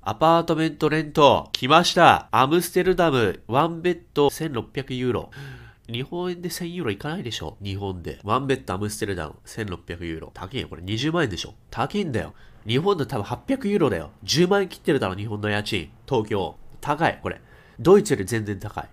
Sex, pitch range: male, 105-160 Hz